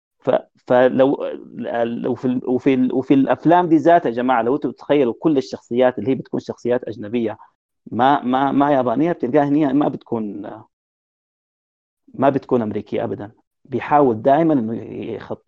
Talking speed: 145 wpm